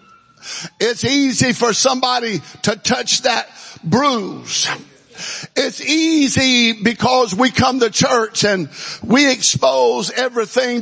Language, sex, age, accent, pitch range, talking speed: English, male, 50-69, American, 200-255 Hz, 105 wpm